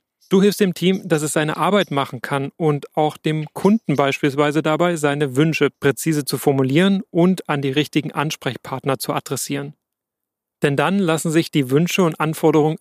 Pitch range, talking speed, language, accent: 140-165 Hz, 170 wpm, German, German